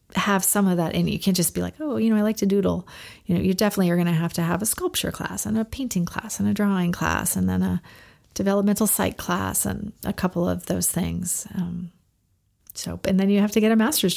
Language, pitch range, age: English, 170-215 Hz, 40-59